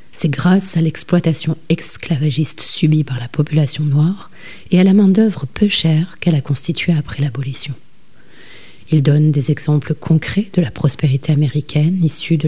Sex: female